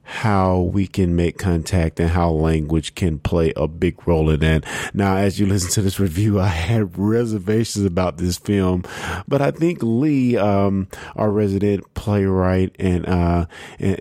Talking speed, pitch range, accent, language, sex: 165 wpm, 90-115 Hz, American, English, male